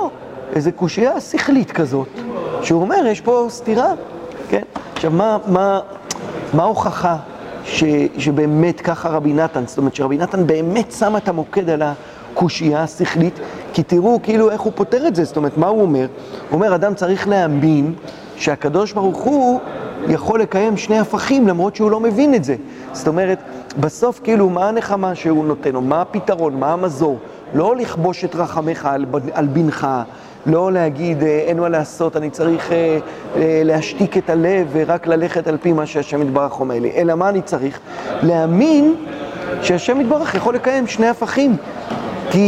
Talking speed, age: 155 wpm, 40-59